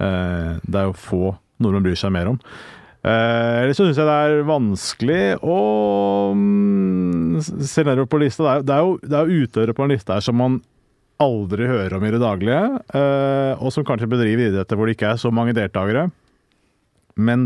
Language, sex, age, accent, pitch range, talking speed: English, male, 30-49, Norwegian, 100-125 Hz, 175 wpm